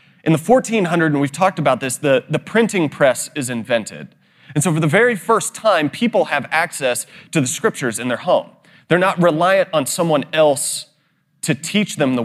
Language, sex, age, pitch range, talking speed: English, male, 30-49, 140-180 Hz, 195 wpm